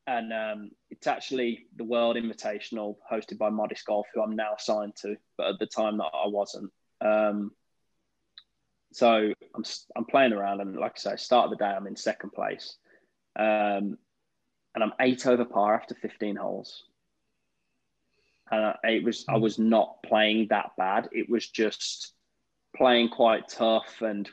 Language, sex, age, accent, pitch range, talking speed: English, male, 20-39, British, 105-120 Hz, 170 wpm